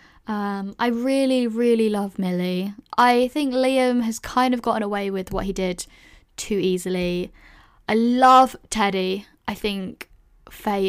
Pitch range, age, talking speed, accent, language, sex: 200-245 Hz, 10-29, 145 wpm, British, English, female